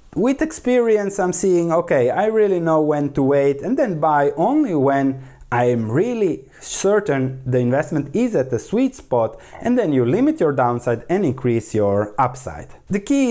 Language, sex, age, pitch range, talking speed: English, male, 30-49, 125-165 Hz, 170 wpm